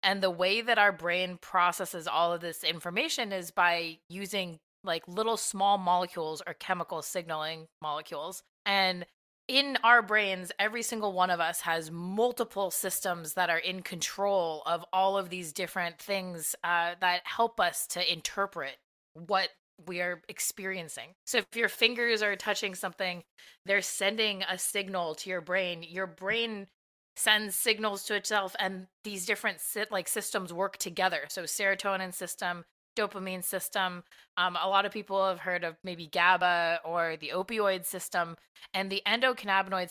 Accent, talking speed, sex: American, 155 wpm, female